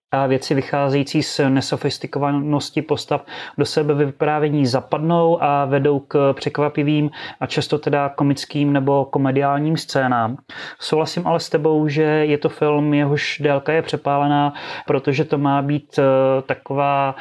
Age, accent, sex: 30-49, native, male